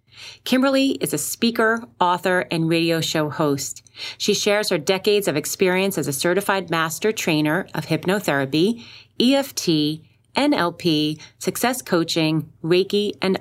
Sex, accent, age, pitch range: female, American, 30-49, 150-200 Hz